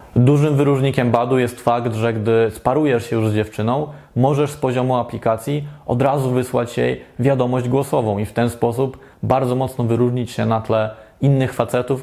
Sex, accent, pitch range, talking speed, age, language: male, native, 115-130 Hz, 170 wpm, 20-39, Polish